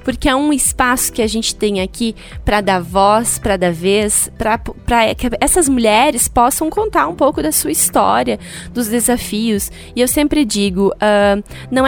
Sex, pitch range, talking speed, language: female, 200-255 Hz, 170 wpm, Portuguese